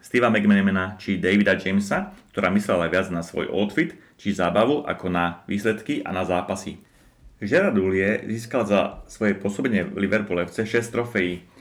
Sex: male